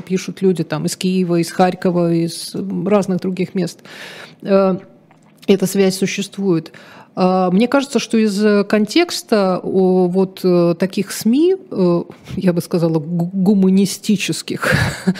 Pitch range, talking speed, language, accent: 180-225 Hz, 100 wpm, Russian, native